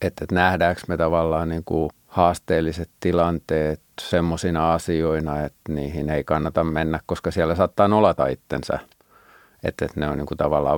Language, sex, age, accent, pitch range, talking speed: Finnish, male, 50-69, native, 75-85 Hz, 135 wpm